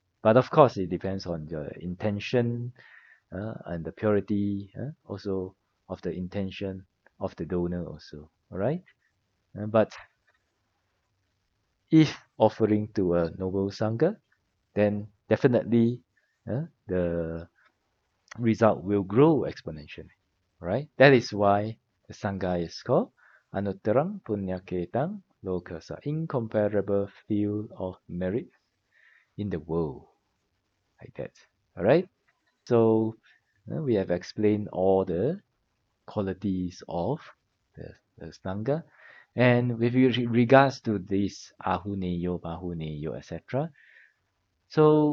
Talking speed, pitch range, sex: 110 wpm, 95-120 Hz, male